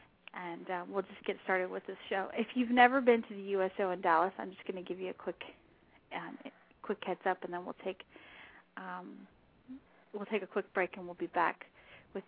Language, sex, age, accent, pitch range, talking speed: English, female, 30-49, American, 185-215 Hz, 220 wpm